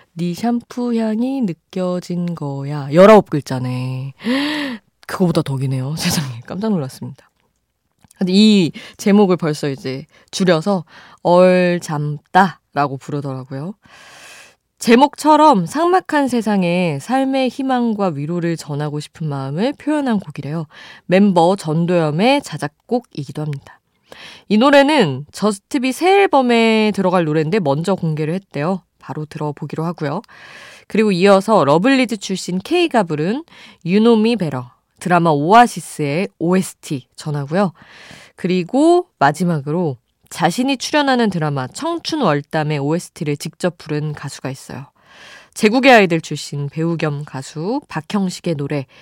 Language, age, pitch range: Korean, 20-39, 150-225 Hz